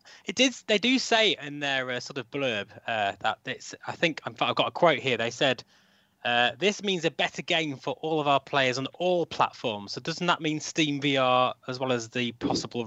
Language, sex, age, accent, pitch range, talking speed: English, male, 20-39, British, 120-155 Hz, 235 wpm